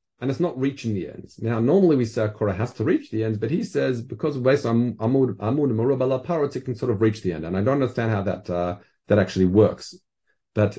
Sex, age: male, 40-59